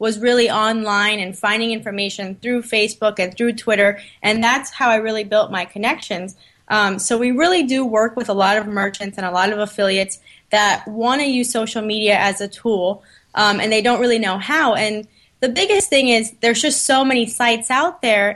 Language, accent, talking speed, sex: English, American, 205 wpm, female